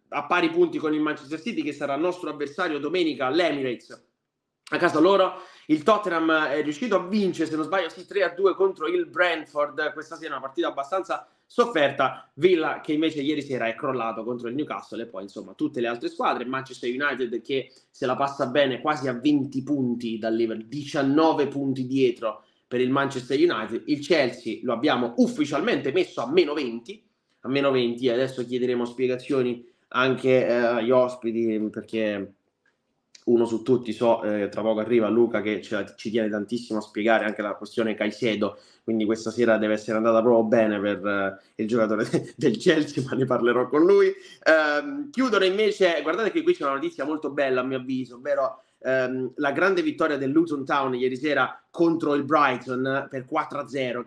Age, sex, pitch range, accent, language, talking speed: 30-49, male, 120-180 Hz, native, Italian, 185 wpm